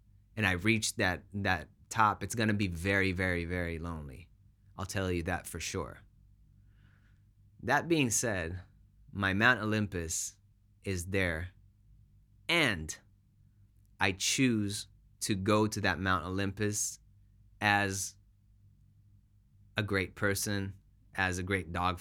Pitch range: 95-105 Hz